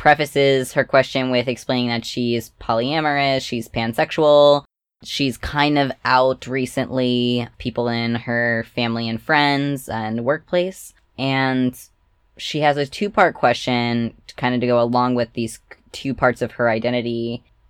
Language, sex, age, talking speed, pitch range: English, female, 10-29, 140 wpm, 115-135 Hz